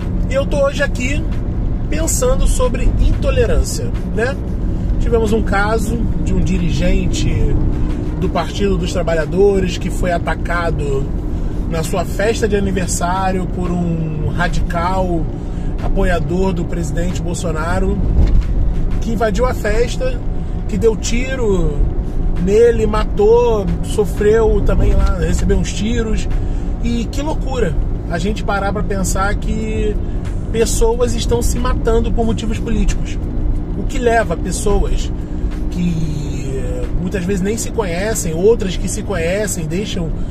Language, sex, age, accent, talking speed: Portuguese, male, 20-39, Brazilian, 120 wpm